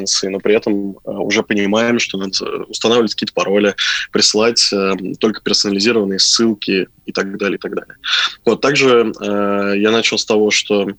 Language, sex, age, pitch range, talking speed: Russian, male, 20-39, 100-115 Hz, 135 wpm